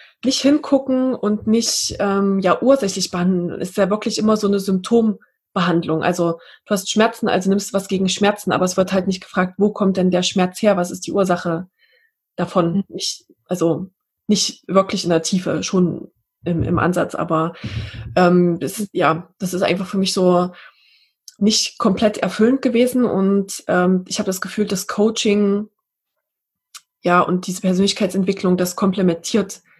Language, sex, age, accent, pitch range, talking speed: German, female, 20-39, German, 180-220 Hz, 165 wpm